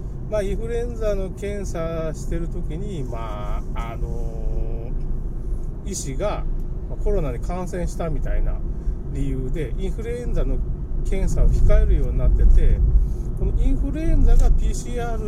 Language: Japanese